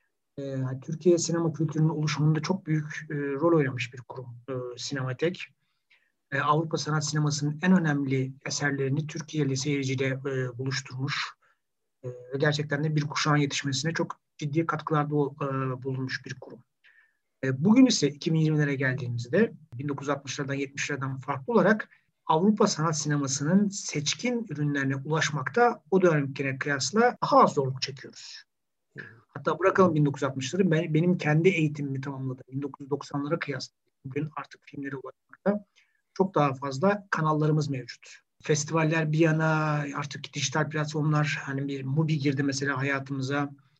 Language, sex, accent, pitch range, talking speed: Turkish, male, native, 135-160 Hz, 120 wpm